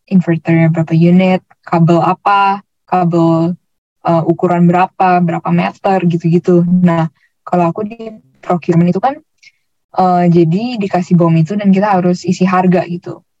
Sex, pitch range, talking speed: female, 170-190 Hz, 135 wpm